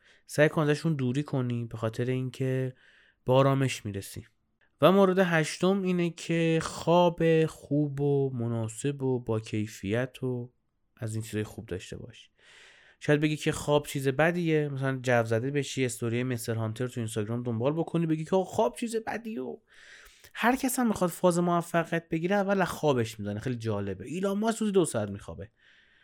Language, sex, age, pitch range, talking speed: Persian, male, 30-49, 115-175 Hz, 155 wpm